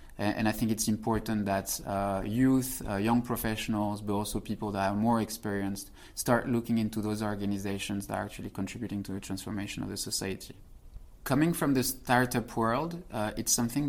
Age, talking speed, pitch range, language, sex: 20-39, 175 wpm, 105-125 Hz, English, male